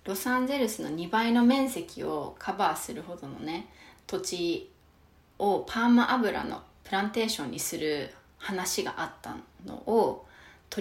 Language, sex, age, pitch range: Japanese, female, 20-39, 170-225 Hz